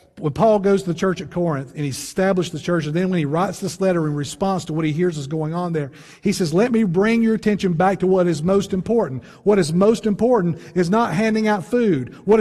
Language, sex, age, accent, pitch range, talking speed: English, male, 50-69, American, 145-210 Hz, 255 wpm